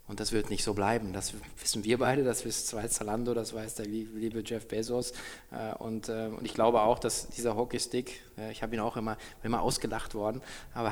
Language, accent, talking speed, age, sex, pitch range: German, German, 205 wpm, 20-39, male, 105-125 Hz